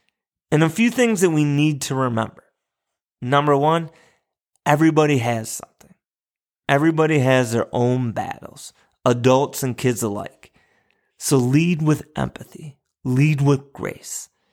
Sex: male